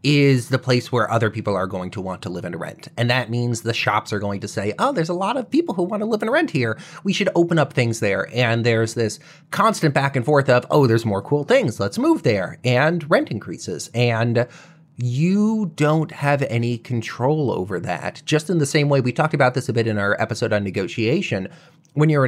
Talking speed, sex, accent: 235 wpm, male, American